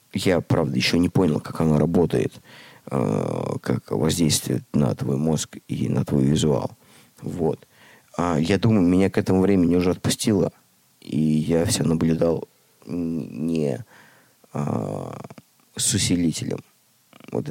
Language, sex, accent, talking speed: Russian, male, native, 125 wpm